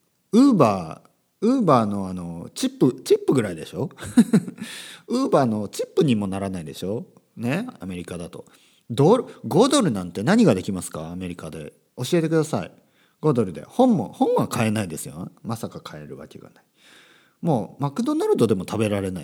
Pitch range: 95-155 Hz